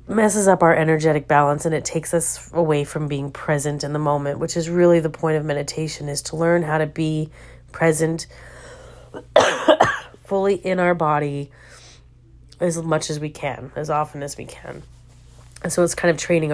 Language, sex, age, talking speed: English, female, 30-49, 180 wpm